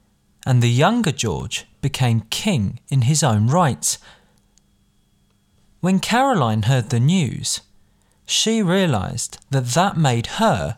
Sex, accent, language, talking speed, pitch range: male, British, English, 115 wpm, 110-170 Hz